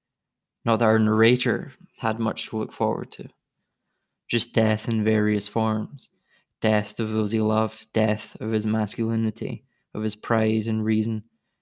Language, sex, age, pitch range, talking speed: English, male, 20-39, 110-120 Hz, 150 wpm